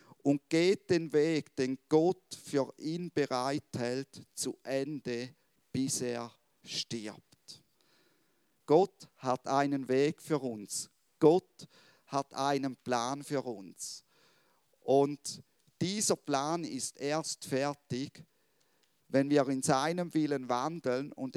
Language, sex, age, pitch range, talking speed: German, male, 50-69, 130-165 Hz, 110 wpm